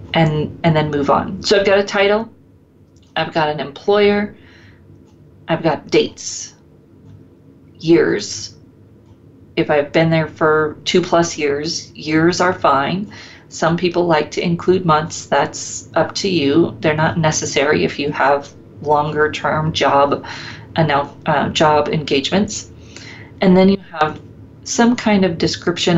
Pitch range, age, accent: 150-185 Hz, 40-59, American